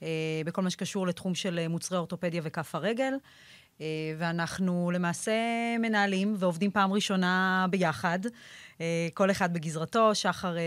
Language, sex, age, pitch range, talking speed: Hebrew, female, 30-49, 170-205 Hz, 110 wpm